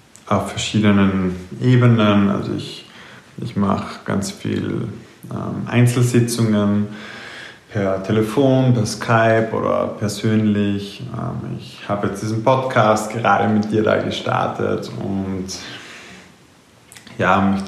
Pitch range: 100-110 Hz